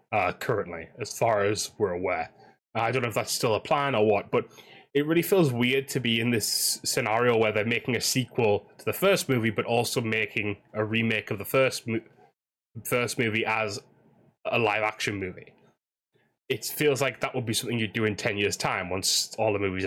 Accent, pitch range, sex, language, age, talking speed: British, 110-135 Hz, male, English, 10-29, 210 wpm